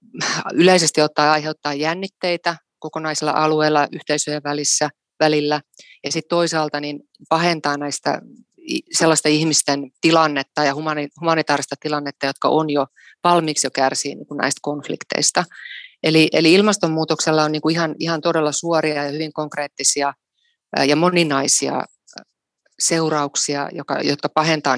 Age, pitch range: 30-49, 145-160 Hz